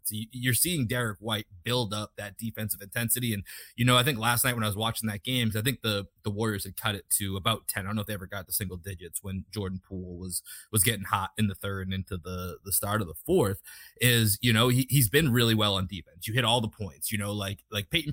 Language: English